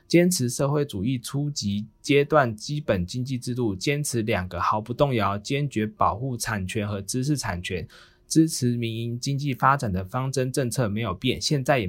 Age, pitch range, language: 20-39, 105-140 Hz, Chinese